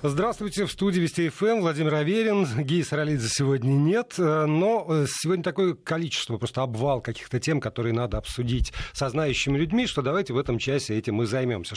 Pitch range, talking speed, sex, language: 120-155 Hz, 170 wpm, male, Russian